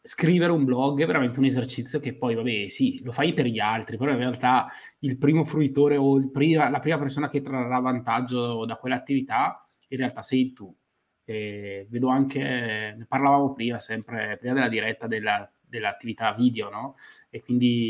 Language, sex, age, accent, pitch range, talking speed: Italian, male, 20-39, native, 110-140 Hz, 165 wpm